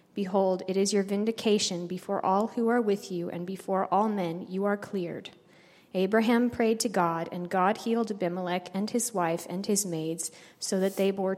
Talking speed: 190 wpm